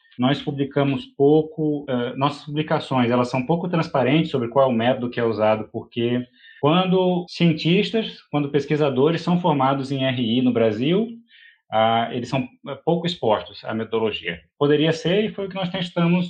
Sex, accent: male, Brazilian